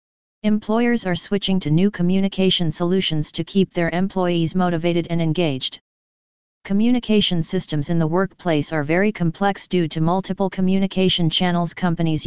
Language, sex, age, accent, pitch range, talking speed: English, female, 40-59, American, 165-190 Hz, 135 wpm